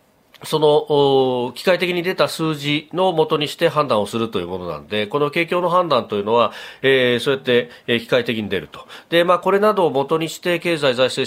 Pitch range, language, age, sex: 130-180 Hz, Japanese, 40-59, male